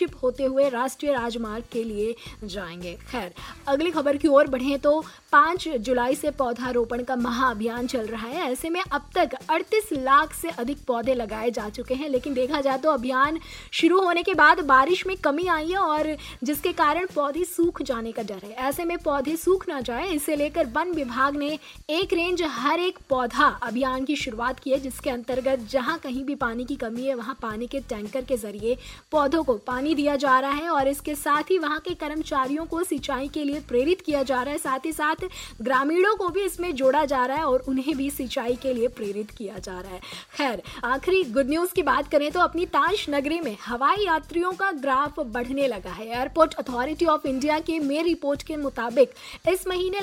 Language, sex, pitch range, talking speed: Hindi, female, 255-325 Hz, 200 wpm